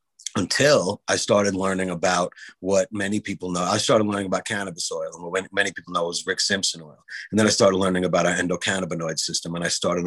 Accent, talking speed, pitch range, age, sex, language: American, 215 wpm, 90-105 Hz, 30-49, male, English